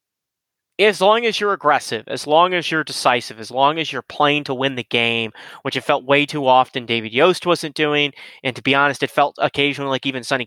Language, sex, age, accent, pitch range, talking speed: English, male, 30-49, American, 120-145 Hz, 225 wpm